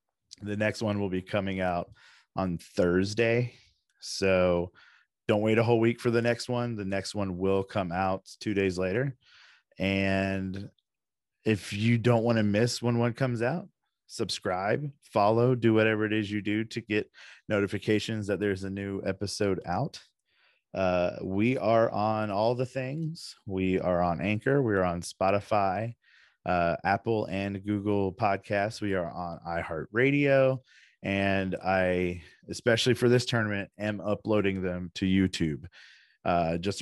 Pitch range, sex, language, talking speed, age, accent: 95-115 Hz, male, English, 150 wpm, 30-49, American